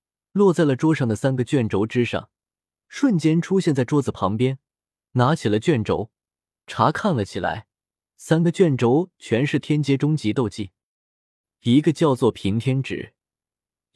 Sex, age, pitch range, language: male, 20-39, 115-165 Hz, Chinese